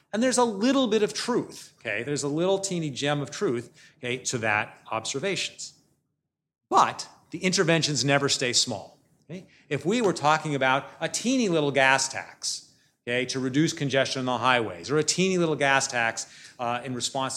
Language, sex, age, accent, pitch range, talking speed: English, male, 40-59, American, 125-155 Hz, 180 wpm